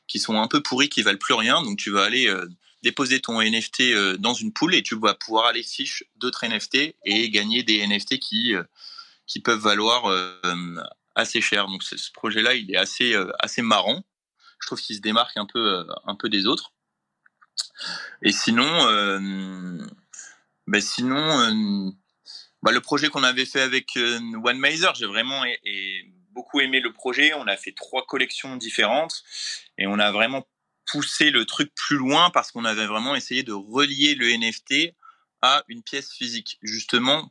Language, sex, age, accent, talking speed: English, male, 20-39, French, 190 wpm